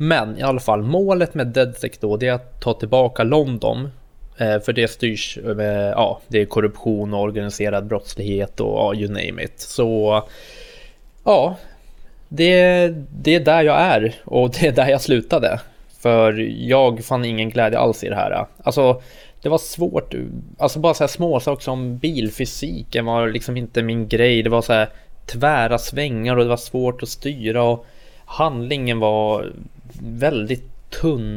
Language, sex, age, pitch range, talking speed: Swedish, male, 20-39, 110-130 Hz, 165 wpm